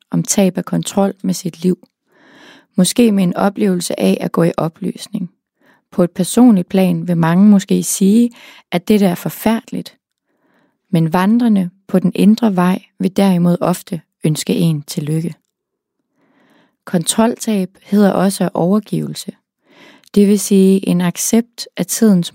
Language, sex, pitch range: English, female, 175-210 Hz